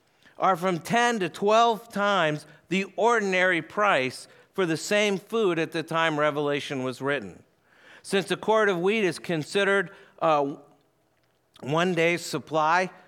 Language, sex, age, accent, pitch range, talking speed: English, male, 50-69, American, 160-195 Hz, 140 wpm